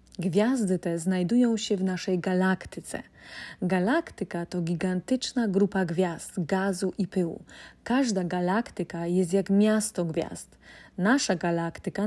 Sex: female